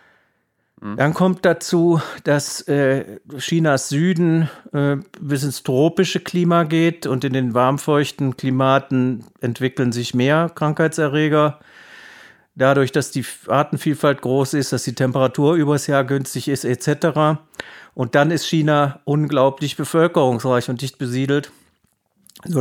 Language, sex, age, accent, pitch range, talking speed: German, male, 50-69, German, 130-155 Hz, 120 wpm